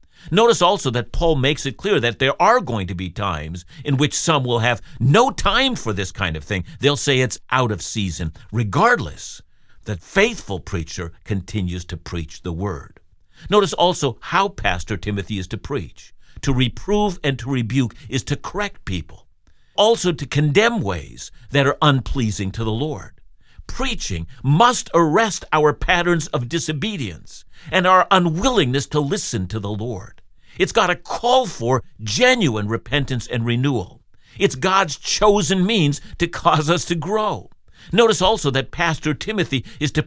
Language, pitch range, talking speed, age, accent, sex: English, 105-170 Hz, 160 wpm, 60-79, American, male